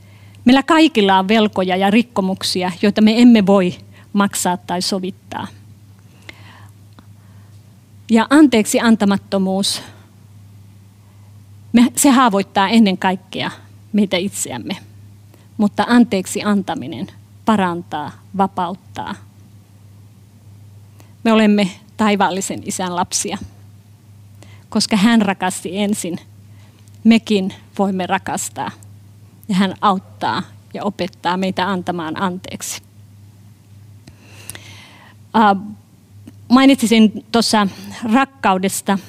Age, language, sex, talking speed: 30-49, Finnish, female, 75 wpm